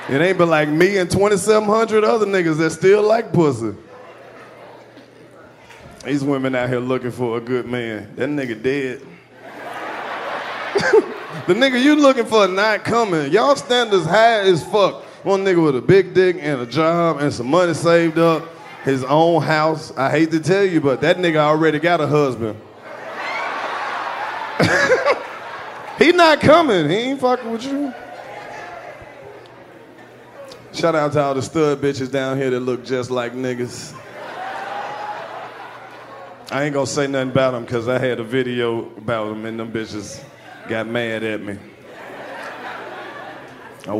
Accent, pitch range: American, 125-185 Hz